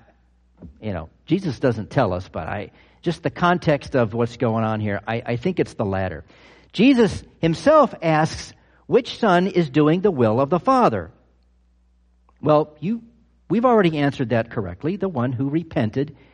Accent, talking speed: American, 165 wpm